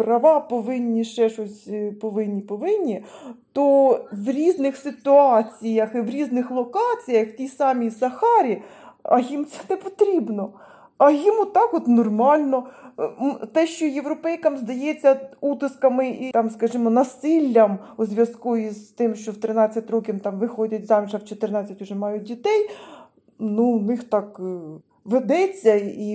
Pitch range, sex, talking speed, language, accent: 225-280 Hz, female, 140 wpm, Ukrainian, native